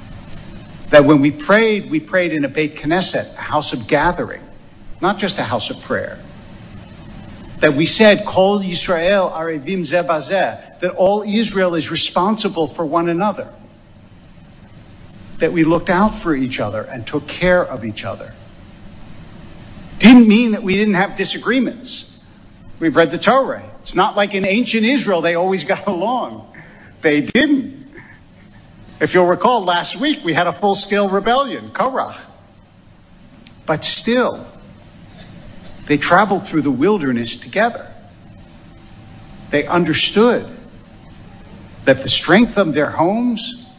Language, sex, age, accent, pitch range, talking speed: English, male, 60-79, American, 140-200 Hz, 130 wpm